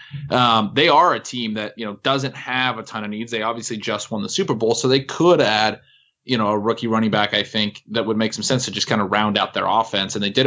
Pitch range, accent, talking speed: 110-130 Hz, American, 275 wpm